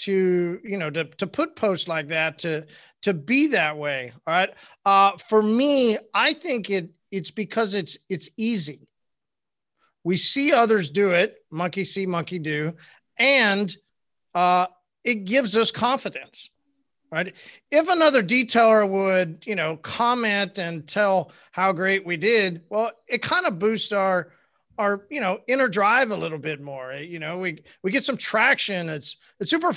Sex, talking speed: male, 165 wpm